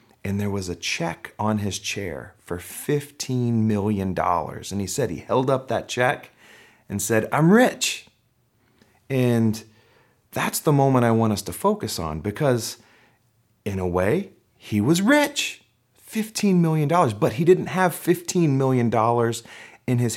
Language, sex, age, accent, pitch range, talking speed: English, male, 40-59, American, 100-130 Hz, 150 wpm